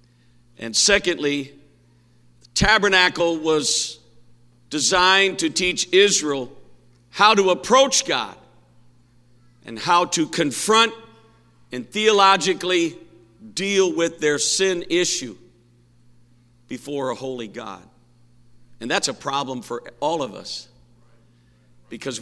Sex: male